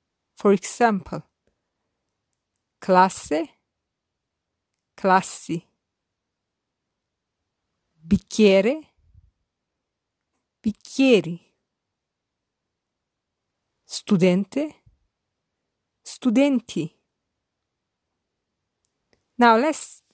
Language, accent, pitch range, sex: English, Italian, 170-230 Hz, female